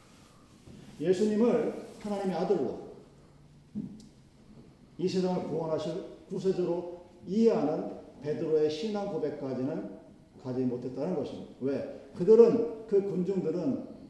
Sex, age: male, 40-59